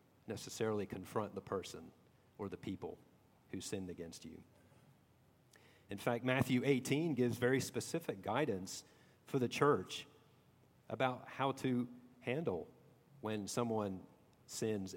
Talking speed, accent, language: 115 wpm, American, English